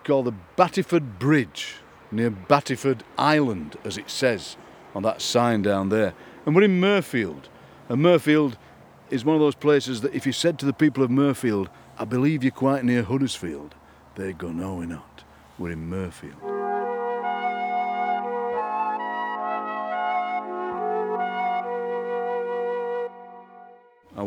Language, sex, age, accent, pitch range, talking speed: English, male, 60-79, British, 90-135 Hz, 125 wpm